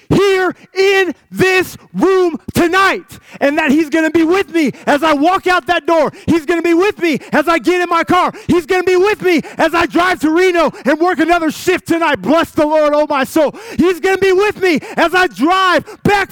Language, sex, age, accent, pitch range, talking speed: English, male, 30-49, American, 290-370 Hz, 230 wpm